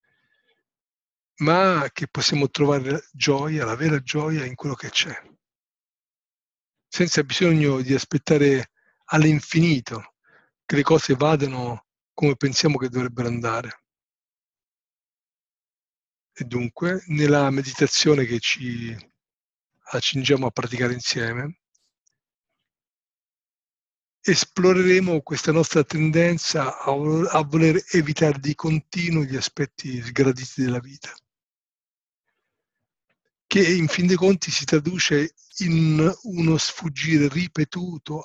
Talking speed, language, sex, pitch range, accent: 95 wpm, Italian, male, 135-160 Hz, native